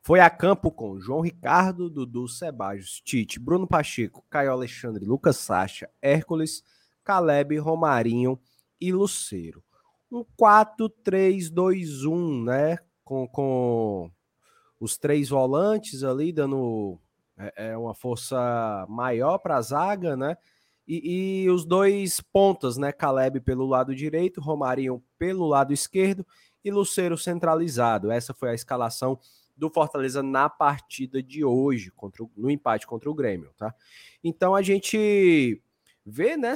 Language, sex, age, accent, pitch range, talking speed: Portuguese, male, 20-39, Brazilian, 125-180 Hz, 130 wpm